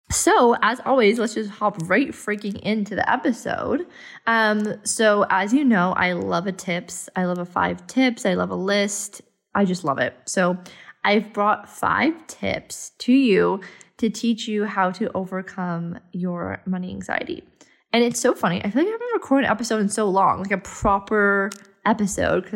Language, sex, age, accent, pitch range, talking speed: English, female, 20-39, American, 190-245 Hz, 185 wpm